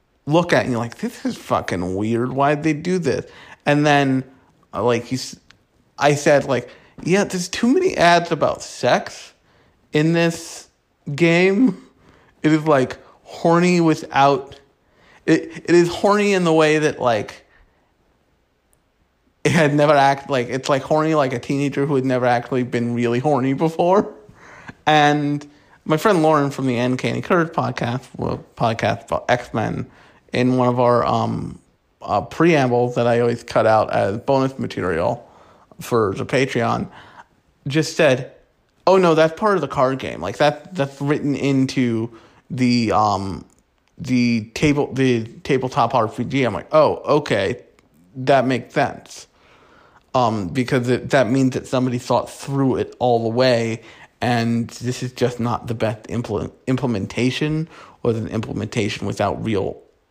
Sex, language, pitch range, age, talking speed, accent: male, English, 120-155 Hz, 30-49, 150 wpm, American